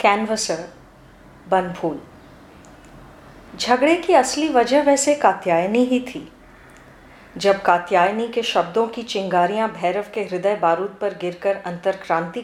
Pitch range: 190-275 Hz